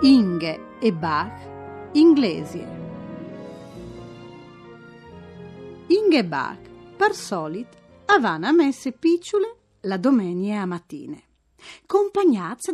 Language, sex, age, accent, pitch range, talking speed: Italian, female, 40-59, native, 175-285 Hz, 80 wpm